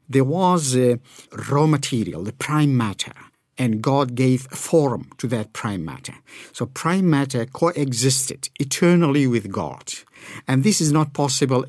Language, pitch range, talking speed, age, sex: English, 115-145 Hz, 145 wpm, 50-69, male